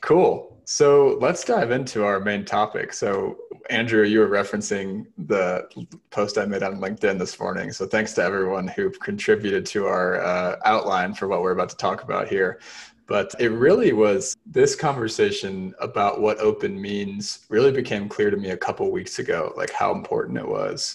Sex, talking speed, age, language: male, 185 wpm, 20-39, English